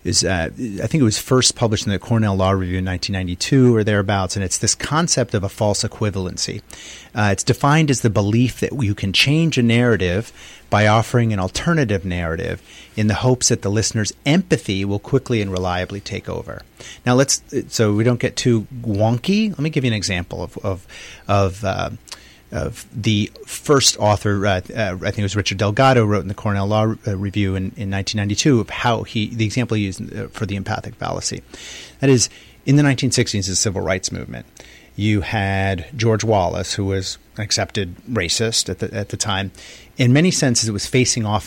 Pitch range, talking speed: 100-120 Hz, 200 wpm